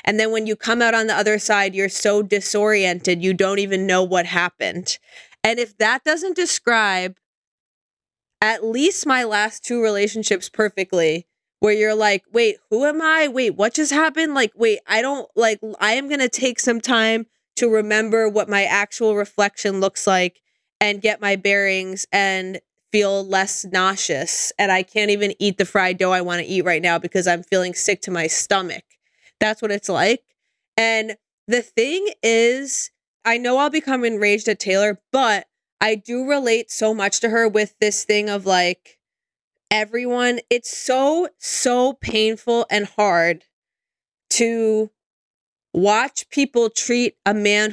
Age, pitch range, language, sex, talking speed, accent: 20-39, 200-245 Hz, English, female, 165 wpm, American